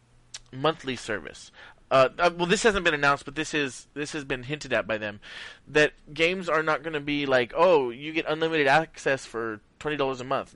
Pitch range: 125-155 Hz